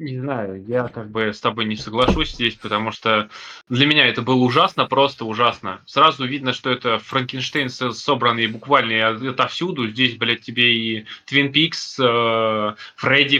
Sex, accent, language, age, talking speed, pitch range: male, native, Russian, 20-39, 150 wpm, 125-155 Hz